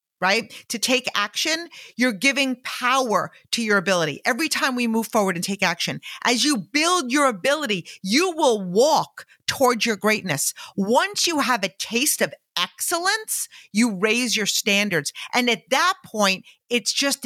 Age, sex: 50-69, female